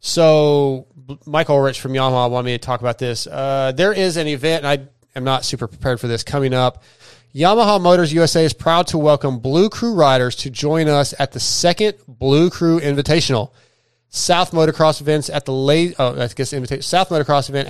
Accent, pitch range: American, 130-170 Hz